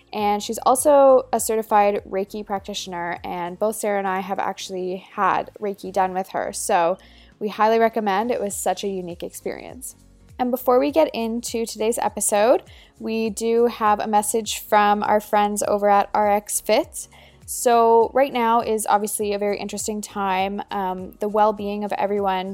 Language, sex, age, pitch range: English, female, 10-29, 200-230 Hz